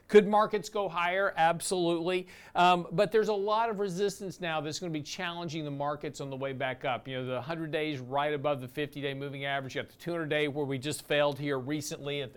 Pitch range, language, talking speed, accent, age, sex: 140-175 Hz, English, 230 wpm, American, 50-69, male